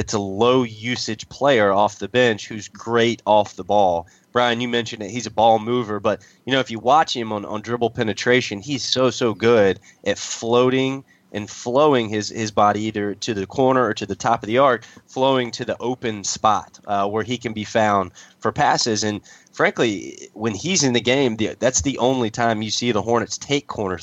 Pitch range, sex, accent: 105-125 Hz, male, American